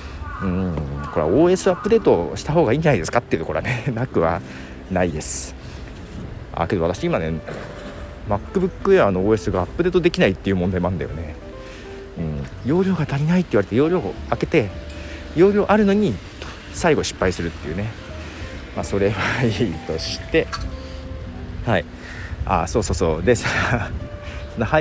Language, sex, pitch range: Japanese, male, 85-130 Hz